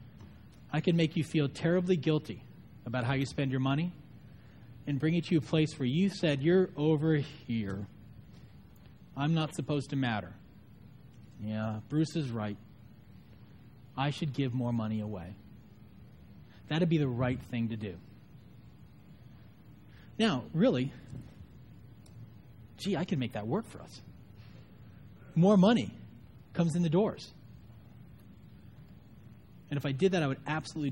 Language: English